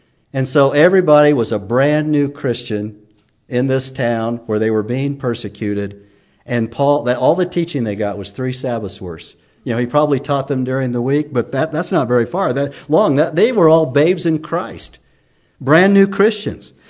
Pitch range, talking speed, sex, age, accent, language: 140-190 Hz, 190 wpm, male, 60-79, American, English